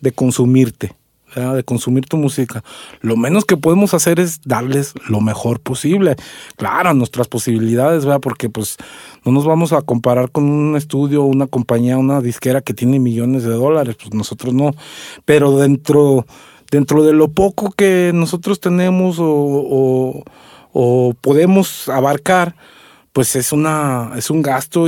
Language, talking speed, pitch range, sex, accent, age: Spanish, 150 wpm, 125-170 Hz, male, Mexican, 40-59